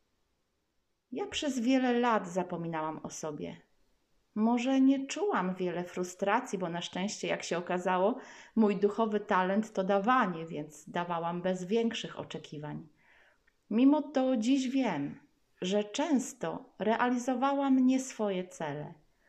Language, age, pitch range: Polish, 30-49, 175-250 Hz